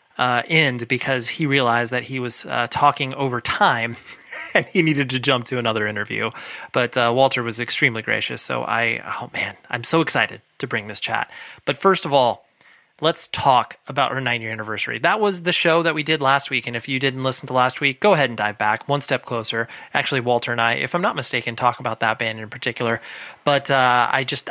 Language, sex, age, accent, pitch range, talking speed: English, male, 20-39, American, 120-145 Hz, 225 wpm